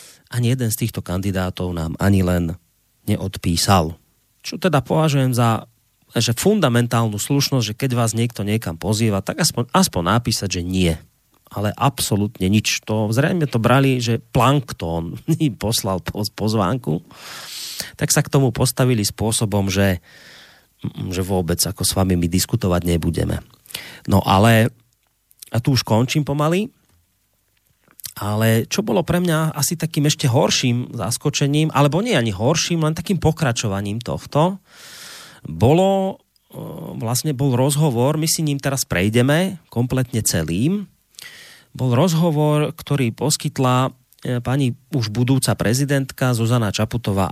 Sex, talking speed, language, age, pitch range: male, 130 wpm, Slovak, 30-49, 100-140 Hz